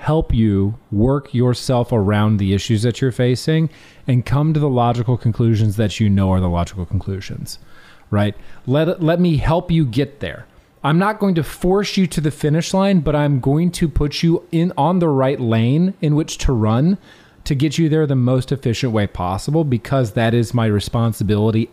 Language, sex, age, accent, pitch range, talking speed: English, male, 30-49, American, 115-165 Hz, 195 wpm